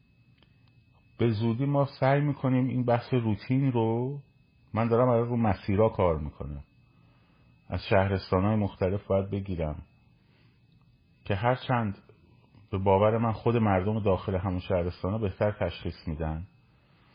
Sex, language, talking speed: male, Persian, 120 wpm